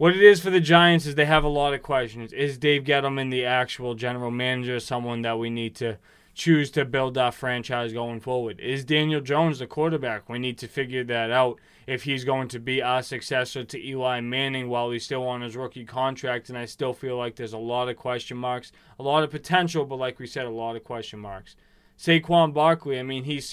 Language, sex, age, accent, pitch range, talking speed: English, male, 20-39, American, 125-145 Hz, 225 wpm